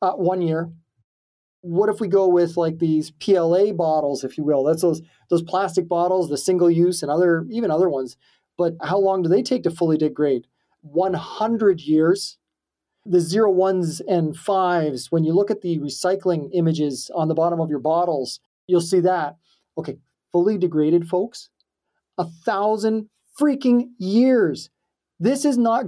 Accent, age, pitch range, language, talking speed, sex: American, 30-49, 160-195 Hz, English, 165 wpm, male